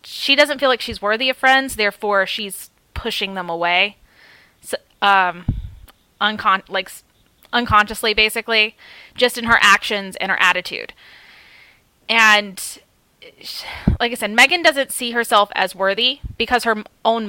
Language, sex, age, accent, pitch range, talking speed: English, female, 20-39, American, 190-230 Hz, 135 wpm